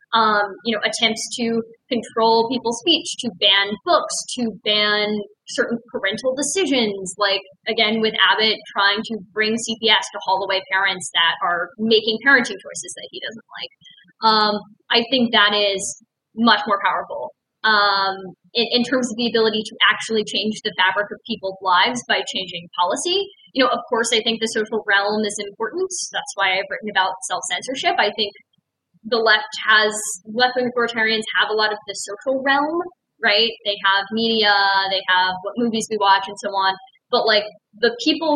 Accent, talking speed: American, 170 wpm